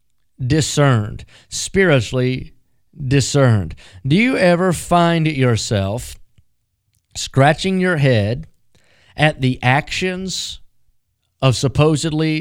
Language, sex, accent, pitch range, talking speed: English, male, American, 125-165 Hz, 75 wpm